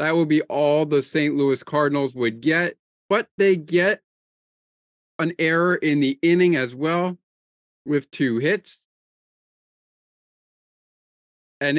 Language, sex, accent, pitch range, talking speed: English, male, American, 140-175 Hz, 120 wpm